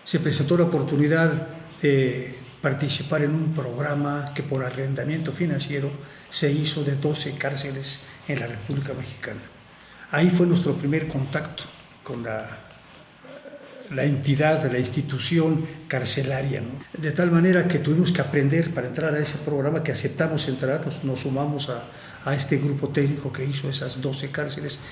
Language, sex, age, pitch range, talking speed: Spanish, male, 50-69, 135-160 Hz, 150 wpm